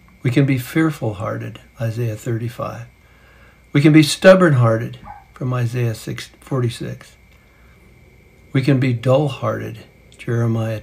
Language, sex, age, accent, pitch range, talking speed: English, male, 60-79, American, 115-150 Hz, 100 wpm